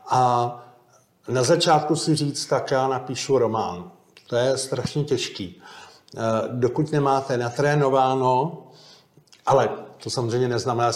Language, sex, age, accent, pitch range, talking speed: Czech, male, 50-69, native, 125-145 Hz, 115 wpm